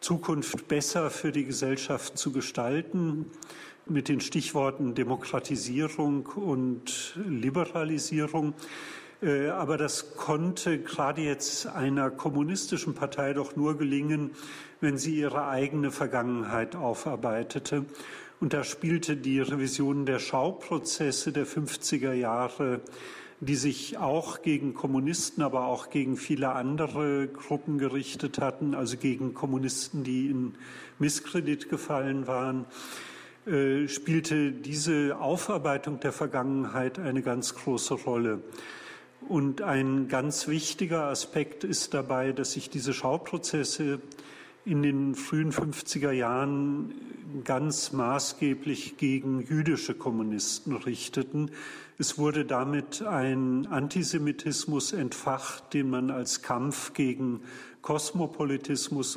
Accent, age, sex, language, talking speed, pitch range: German, 40-59, male, German, 105 wpm, 135-150 Hz